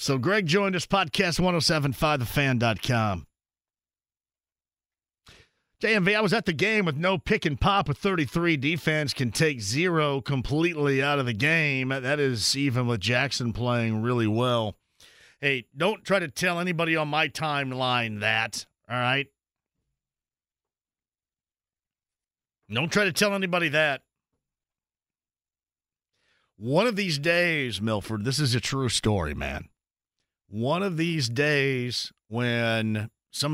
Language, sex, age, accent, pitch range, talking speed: English, male, 50-69, American, 115-160 Hz, 130 wpm